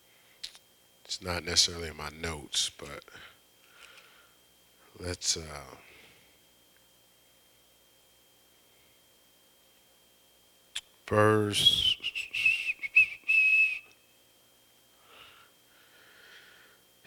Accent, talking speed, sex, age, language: American, 35 wpm, male, 40-59, English